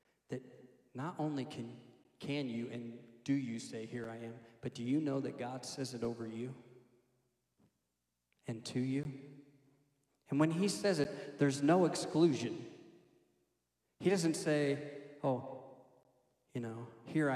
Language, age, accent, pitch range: English, 40-59, American, 120-145 Hz